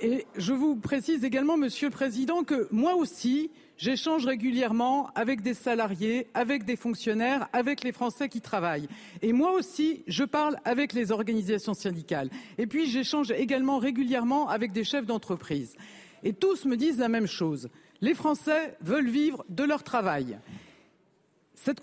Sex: female